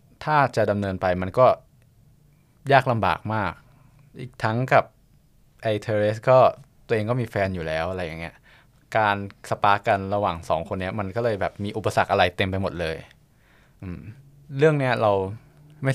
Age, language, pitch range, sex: 20-39, Thai, 95-130 Hz, male